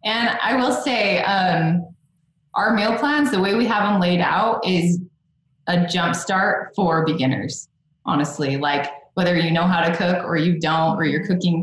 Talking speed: 175 wpm